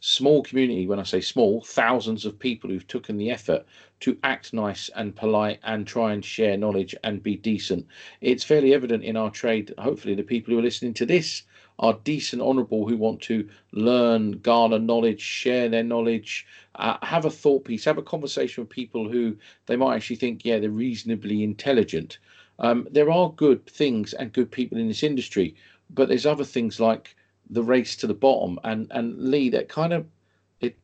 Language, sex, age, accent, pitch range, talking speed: English, male, 40-59, British, 105-130 Hz, 195 wpm